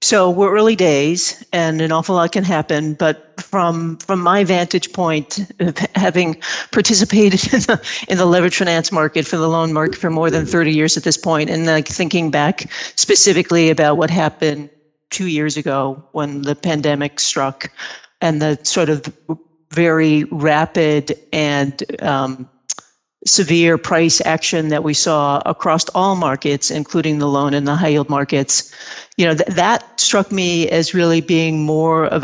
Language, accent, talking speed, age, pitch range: English, American, 165 wpm, 50-69, 155-180 Hz